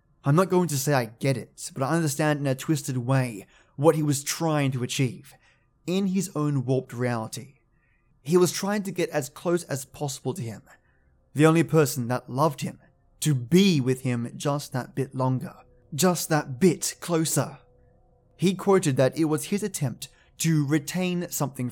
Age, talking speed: 20-39, 180 wpm